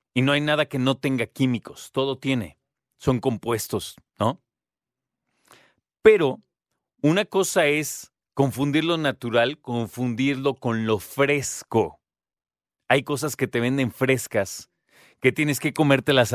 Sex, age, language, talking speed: male, 40-59, Spanish, 125 wpm